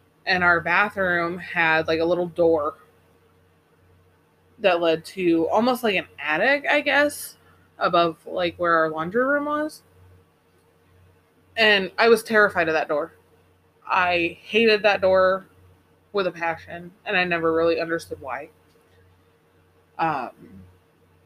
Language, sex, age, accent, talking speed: English, female, 20-39, American, 125 wpm